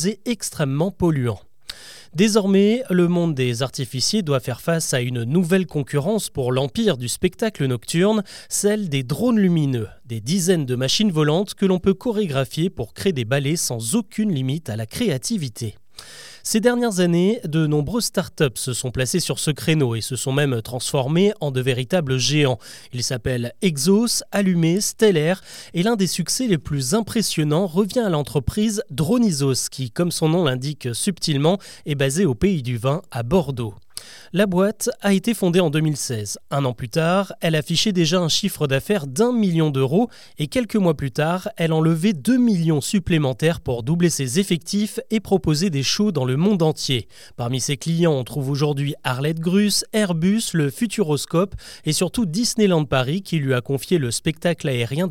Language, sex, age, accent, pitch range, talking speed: French, male, 30-49, French, 135-195 Hz, 170 wpm